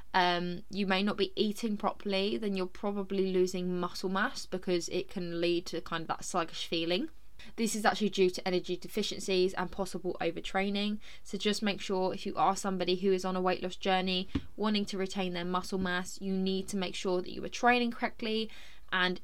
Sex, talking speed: female, 200 wpm